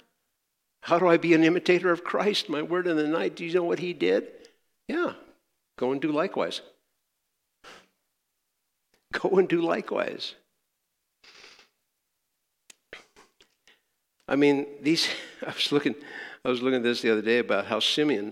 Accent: American